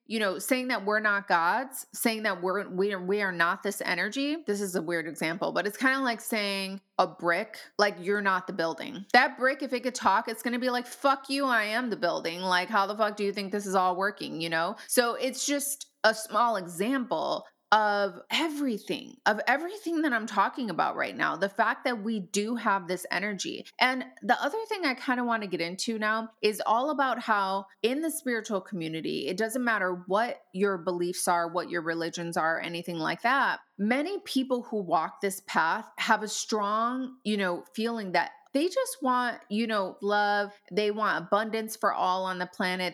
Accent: American